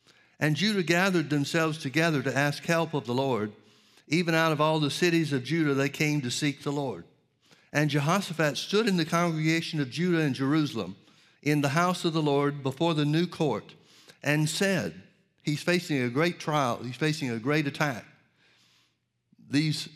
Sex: male